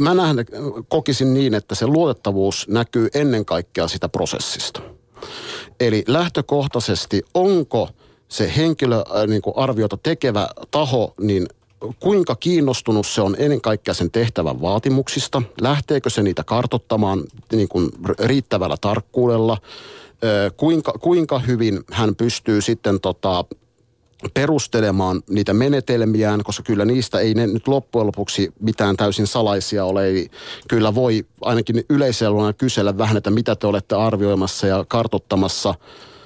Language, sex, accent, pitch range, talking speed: Finnish, male, native, 100-125 Hz, 115 wpm